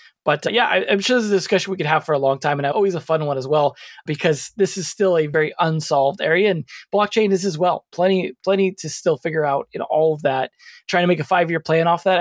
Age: 20-39